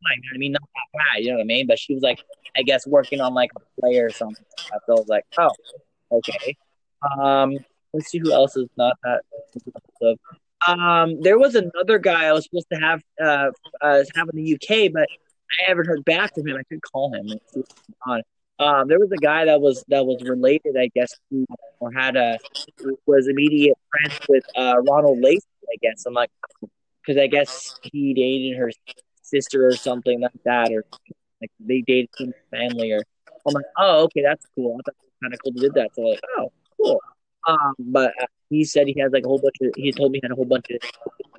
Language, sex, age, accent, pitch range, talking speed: English, male, 20-39, American, 125-155 Hz, 225 wpm